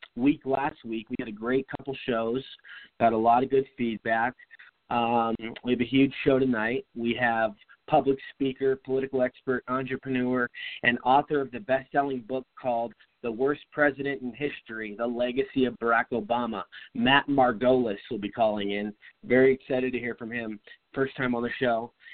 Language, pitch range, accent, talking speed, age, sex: English, 115-135 Hz, American, 170 wpm, 30-49, male